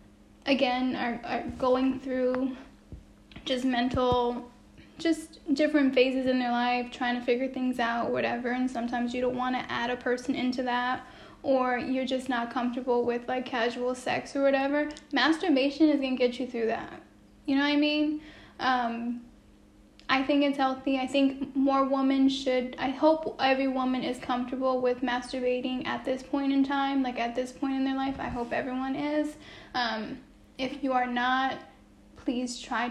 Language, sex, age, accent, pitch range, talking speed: English, female, 10-29, American, 245-275 Hz, 170 wpm